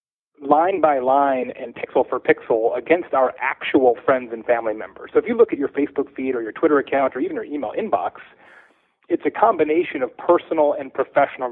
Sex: male